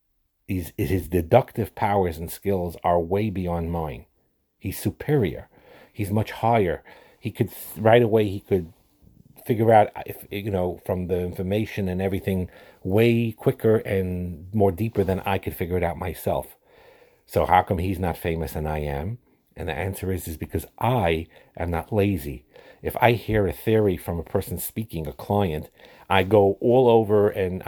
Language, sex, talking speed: English, male, 170 wpm